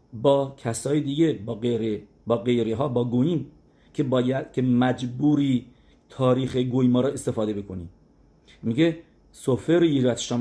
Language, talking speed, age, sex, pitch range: English, 135 wpm, 50-69, male, 120-150 Hz